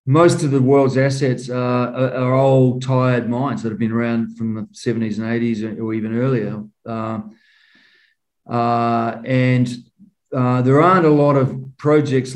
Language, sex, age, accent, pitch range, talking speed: English, male, 40-59, Australian, 115-135 Hz, 155 wpm